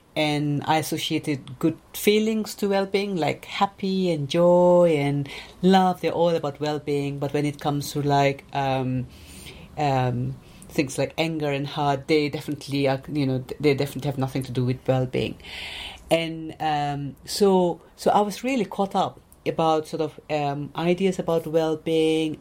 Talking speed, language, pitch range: 160 wpm, English, 145-180 Hz